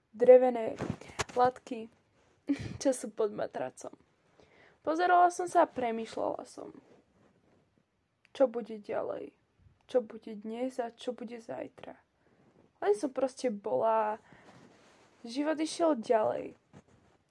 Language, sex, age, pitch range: Slovak, female, 20-39, 245-295 Hz